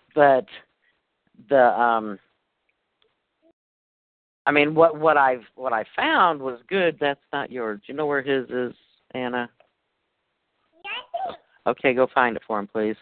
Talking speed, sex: 140 wpm, male